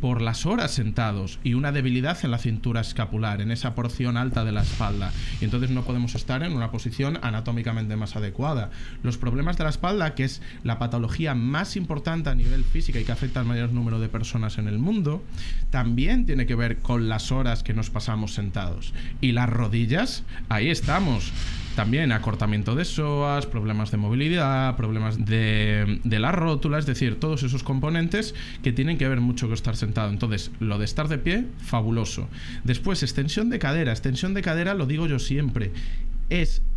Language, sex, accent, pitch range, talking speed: Spanish, male, Spanish, 110-145 Hz, 185 wpm